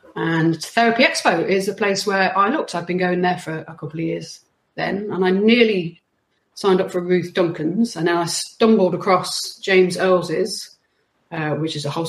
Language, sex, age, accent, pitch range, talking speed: English, female, 30-49, British, 170-215 Hz, 190 wpm